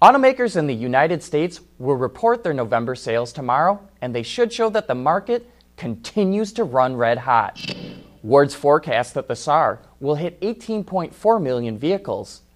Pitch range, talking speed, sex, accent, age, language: 120-200 Hz, 160 wpm, male, American, 30-49, English